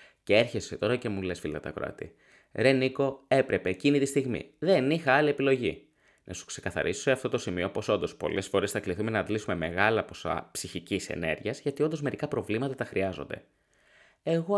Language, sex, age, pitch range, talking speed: Greek, male, 20-39, 105-160 Hz, 185 wpm